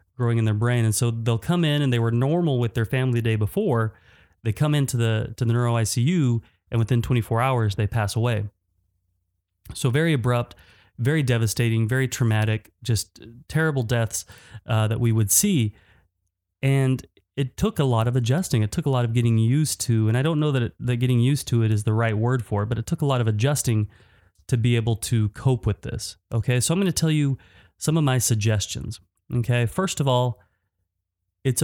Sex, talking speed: male, 210 wpm